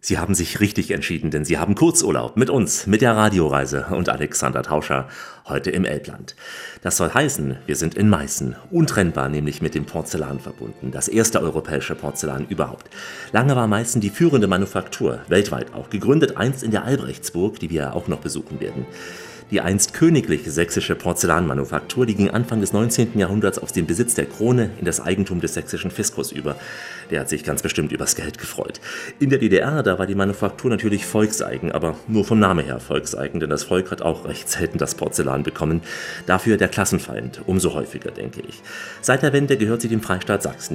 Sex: male